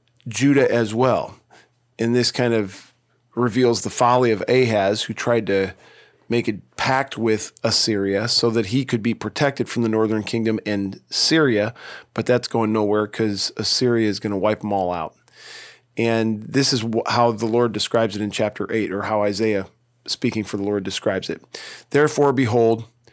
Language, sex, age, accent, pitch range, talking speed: English, male, 40-59, American, 110-125 Hz, 175 wpm